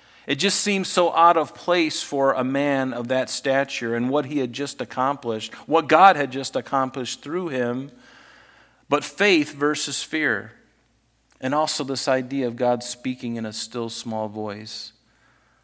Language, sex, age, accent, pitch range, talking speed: English, male, 40-59, American, 115-145 Hz, 160 wpm